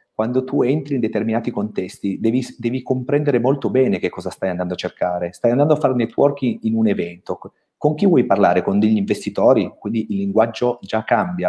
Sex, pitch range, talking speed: male, 95-120 Hz, 195 wpm